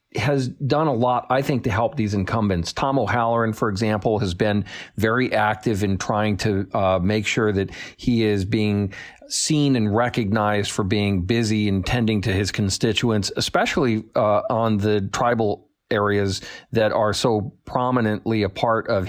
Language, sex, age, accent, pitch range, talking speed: English, male, 40-59, American, 100-120 Hz, 165 wpm